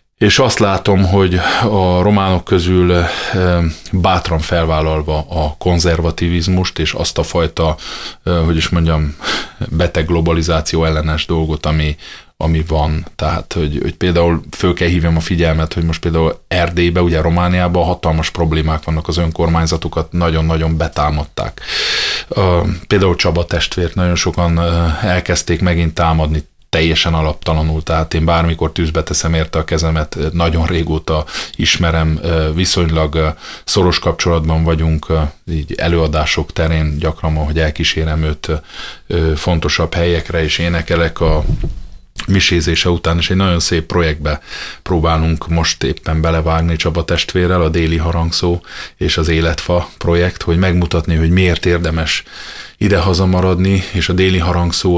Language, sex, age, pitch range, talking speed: Hungarian, male, 30-49, 80-90 Hz, 125 wpm